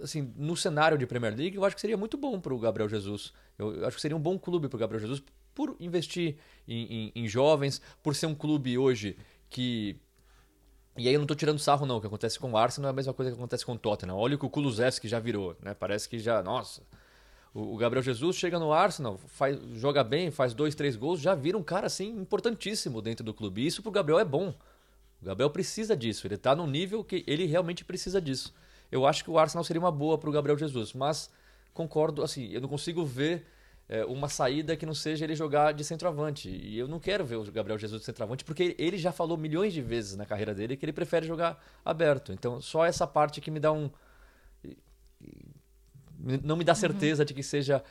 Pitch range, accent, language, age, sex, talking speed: 115-160 Hz, Brazilian, Portuguese, 20-39, male, 235 wpm